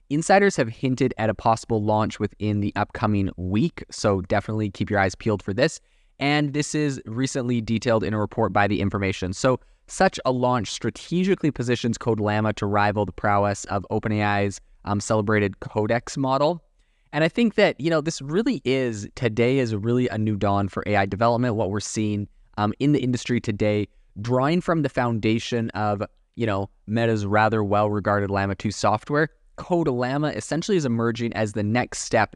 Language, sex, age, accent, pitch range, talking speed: English, male, 20-39, American, 105-125 Hz, 180 wpm